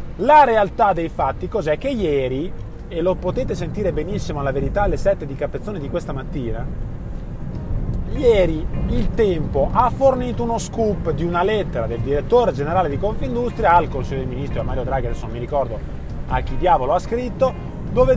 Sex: male